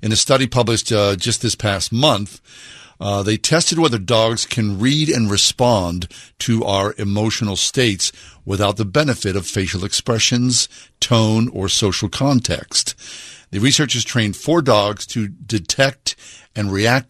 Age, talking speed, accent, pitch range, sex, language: 50-69, 145 wpm, American, 100-120 Hz, male, English